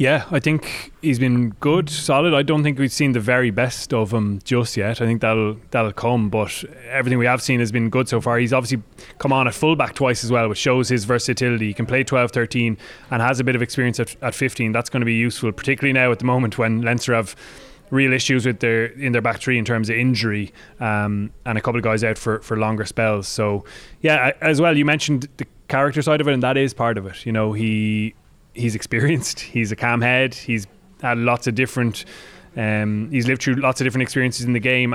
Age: 20-39